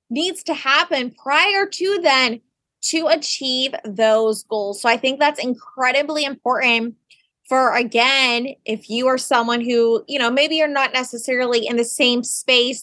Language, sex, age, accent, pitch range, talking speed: English, female, 20-39, American, 245-300 Hz, 155 wpm